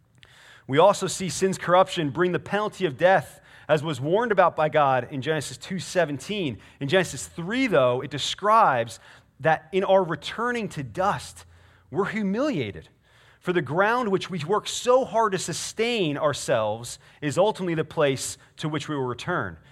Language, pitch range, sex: English, 135-185 Hz, male